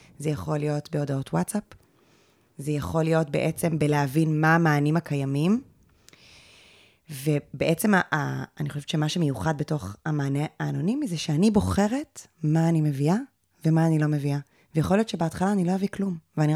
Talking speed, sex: 150 wpm, female